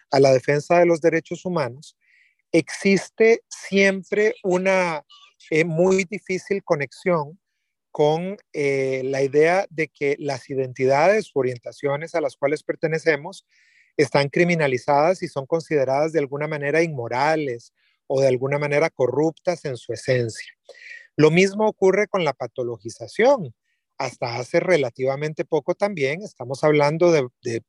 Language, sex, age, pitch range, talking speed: Spanish, male, 40-59, 140-185 Hz, 130 wpm